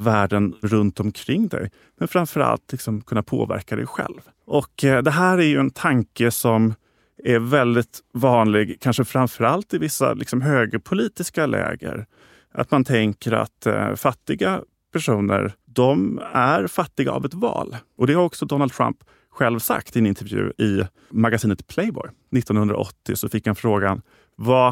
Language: Swedish